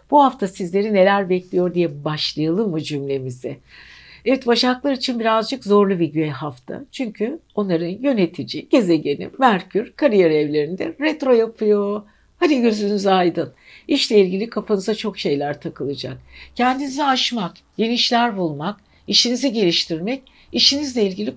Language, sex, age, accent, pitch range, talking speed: Turkish, female, 60-79, native, 175-245 Hz, 120 wpm